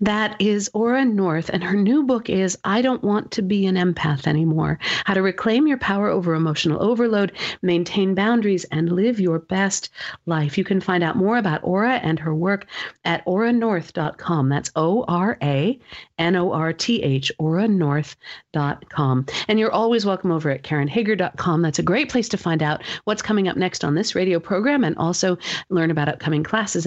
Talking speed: 165 wpm